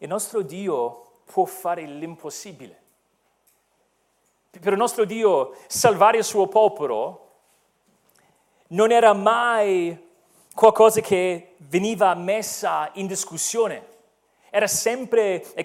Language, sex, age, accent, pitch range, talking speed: Italian, male, 40-59, native, 155-210 Hz, 100 wpm